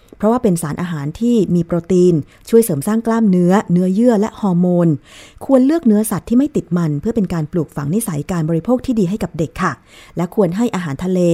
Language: Thai